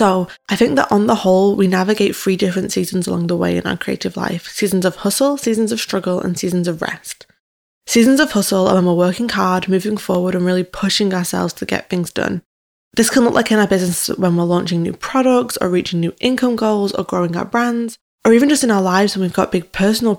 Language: English